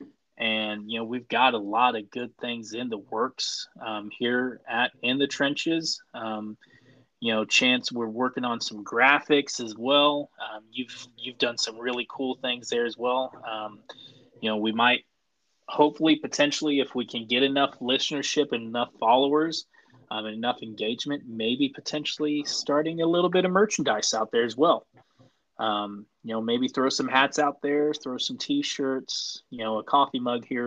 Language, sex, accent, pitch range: English, male, American, 115-140 Hz